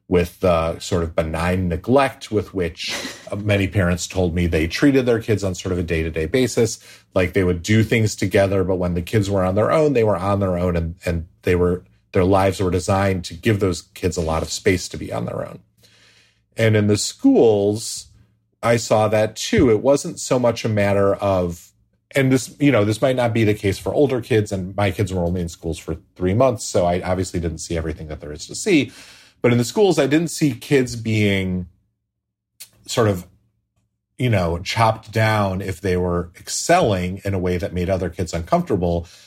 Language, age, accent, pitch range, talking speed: English, 30-49, American, 90-110 Hz, 210 wpm